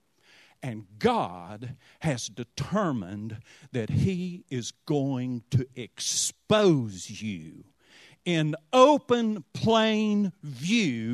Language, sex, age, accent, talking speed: English, male, 50-69, American, 80 wpm